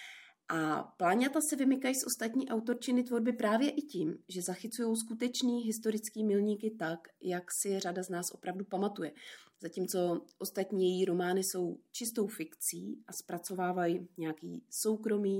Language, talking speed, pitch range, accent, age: Czech, 135 wpm, 170-225 Hz, native, 30-49